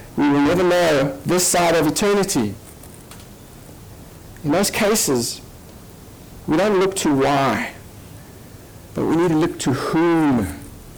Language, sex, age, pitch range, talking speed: English, male, 60-79, 125-175 Hz, 125 wpm